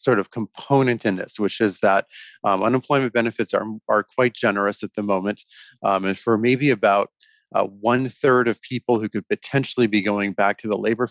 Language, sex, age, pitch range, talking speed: English, male, 30-49, 100-125 Hz, 200 wpm